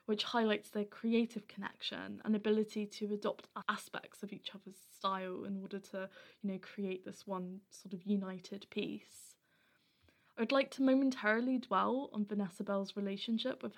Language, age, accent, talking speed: English, 10-29, British, 155 wpm